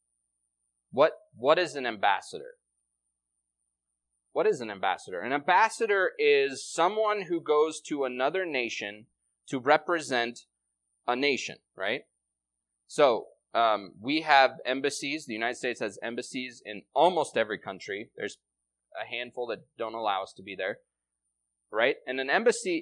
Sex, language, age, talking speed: male, English, 20-39, 135 wpm